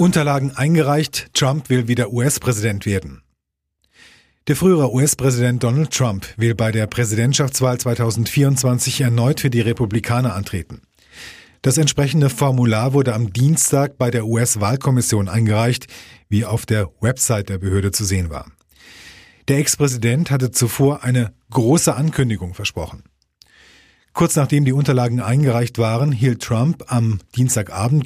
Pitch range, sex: 110-135 Hz, male